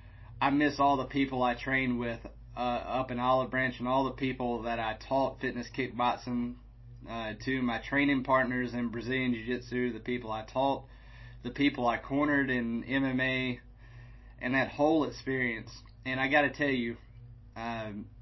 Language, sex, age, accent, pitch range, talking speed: English, male, 30-49, American, 120-130 Hz, 170 wpm